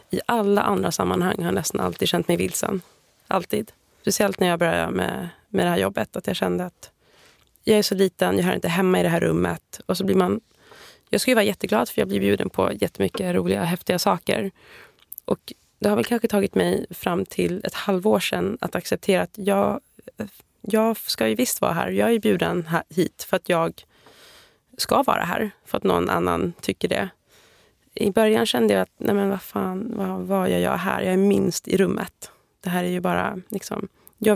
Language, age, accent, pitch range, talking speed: English, 20-39, Swedish, 185-230 Hz, 210 wpm